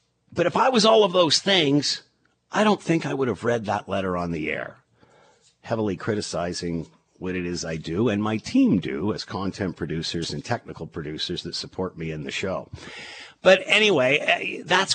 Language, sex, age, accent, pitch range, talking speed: English, male, 50-69, American, 120-200 Hz, 185 wpm